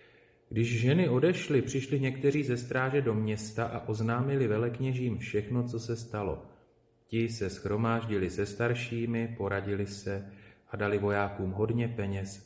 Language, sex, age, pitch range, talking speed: Slovak, male, 40-59, 100-115 Hz, 135 wpm